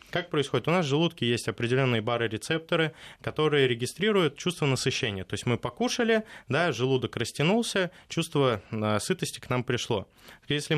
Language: Russian